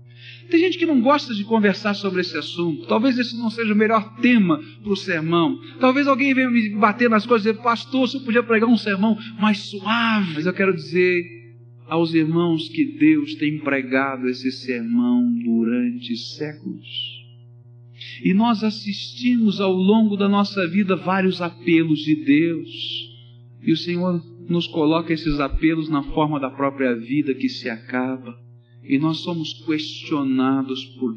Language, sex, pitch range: Portuguese, male, 120-190 Hz